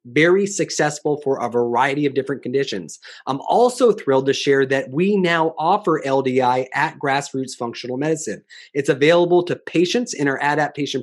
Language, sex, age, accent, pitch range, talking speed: English, male, 30-49, American, 135-170 Hz, 160 wpm